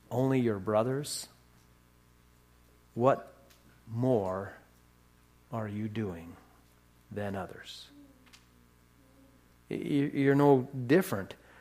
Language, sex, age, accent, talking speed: English, male, 50-69, American, 65 wpm